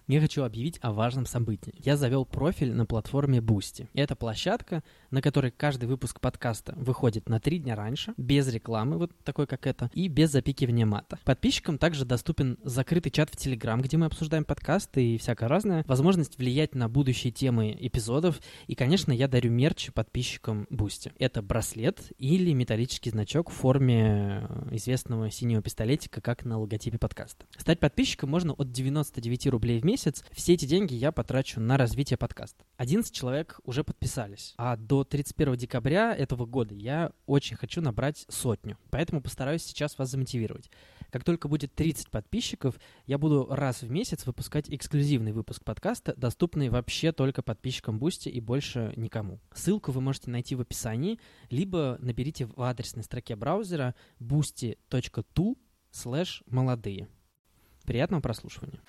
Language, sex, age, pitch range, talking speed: Russian, male, 20-39, 120-150 Hz, 150 wpm